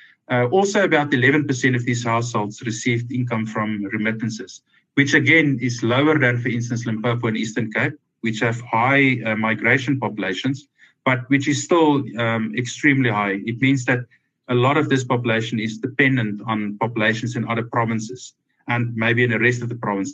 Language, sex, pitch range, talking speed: English, male, 110-135 Hz, 175 wpm